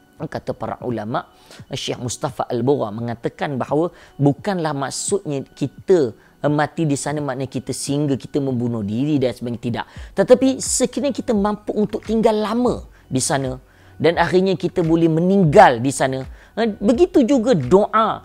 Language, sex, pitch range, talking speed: Malay, female, 130-210 Hz, 140 wpm